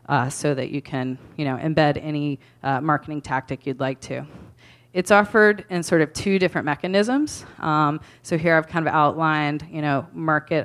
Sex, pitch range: female, 140-160 Hz